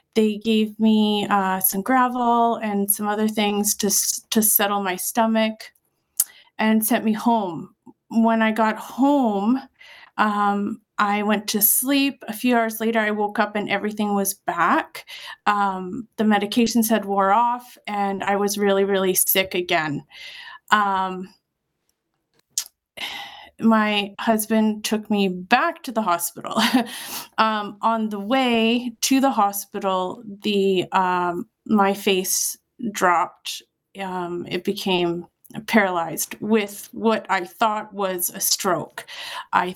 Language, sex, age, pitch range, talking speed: English, female, 30-49, 195-230 Hz, 130 wpm